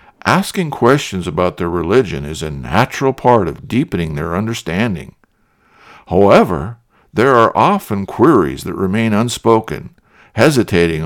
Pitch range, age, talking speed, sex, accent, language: 85-120 Hz, 60-79, 120 wpm, male, American, English